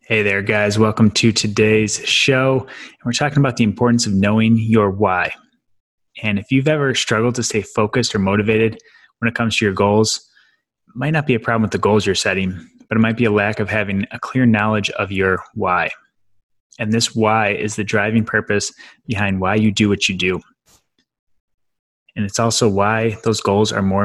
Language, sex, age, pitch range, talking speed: English, male, 20-39, 100-115 Hz, 195 wpm